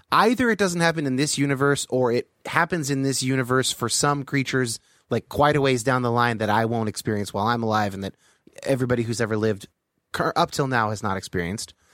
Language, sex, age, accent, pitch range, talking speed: English, male, 30-49, American, 115-160 Hz, 210 wpm